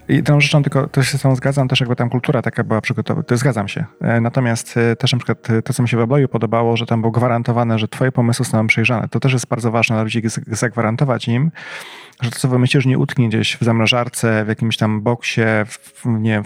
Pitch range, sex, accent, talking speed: 115-130 Hz, male, native, 235 wpm